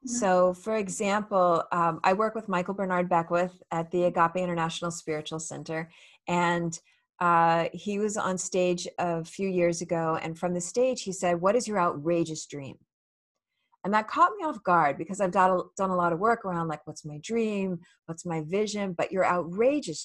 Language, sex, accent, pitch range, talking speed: English, female, American, 170-215 Hz, 185 wpm